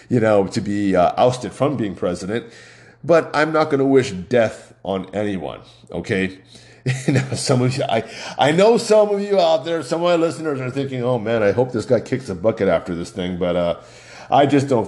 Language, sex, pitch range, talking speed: English, male, 95-130 Hz, 220 wpm